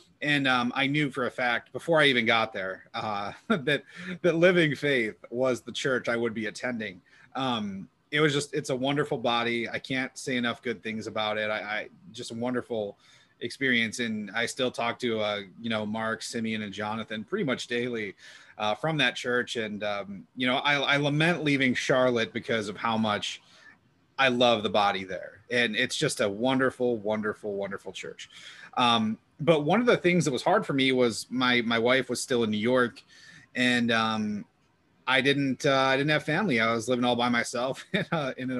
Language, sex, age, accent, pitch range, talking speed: English, male, 30-49, American, 110-140 Hz, 200 wpm